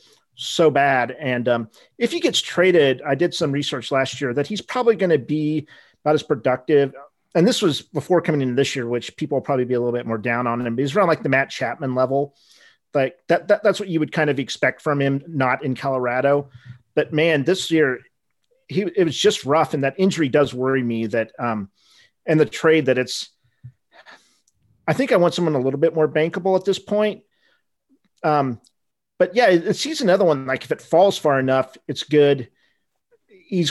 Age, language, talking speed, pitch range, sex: 40-59, English, 210 wpm, 130-165 Hz, male